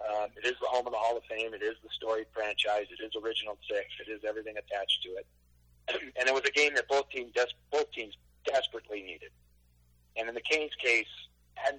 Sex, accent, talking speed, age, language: male, American, 225 wpm, 40-59, English